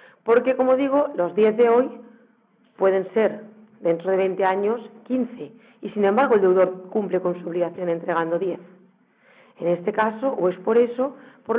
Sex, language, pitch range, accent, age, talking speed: female, Spanish, 185-240 Hz, Spanish, 40-59, 170 wpm